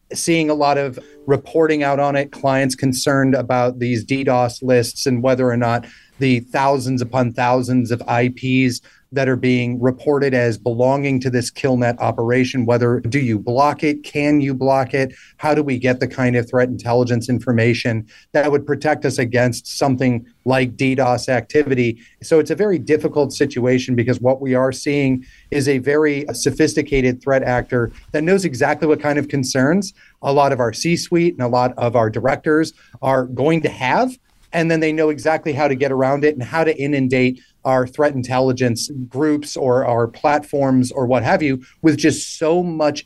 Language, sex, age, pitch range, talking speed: English, male, 30-49, 125-145 Hz, 185 wpm